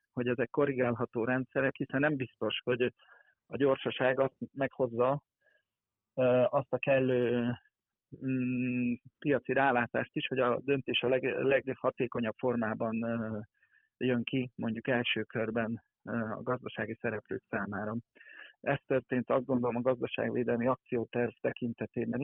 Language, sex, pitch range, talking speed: Hungarian, male, 120-135 Hz, 115 wpm